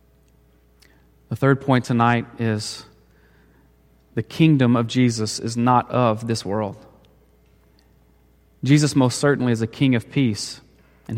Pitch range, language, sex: 110-150 Hz, English, male